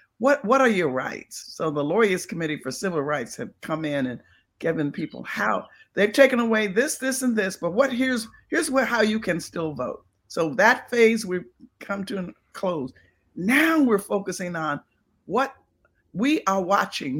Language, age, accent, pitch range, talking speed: English, 50-69, American, 185-255 Hz, 180 wpm